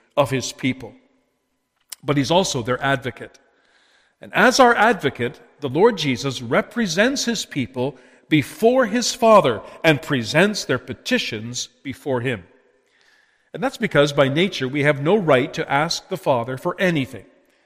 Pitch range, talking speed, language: 130-210 Hz, 145 wpm, English